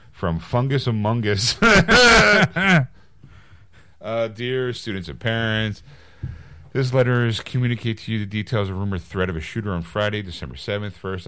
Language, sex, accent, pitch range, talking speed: English, male, American, 85-120 Hz, 150 wpm